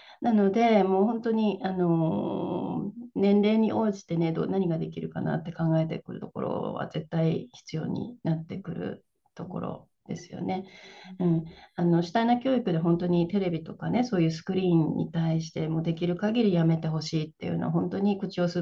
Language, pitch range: Japanese, 165-215 Hz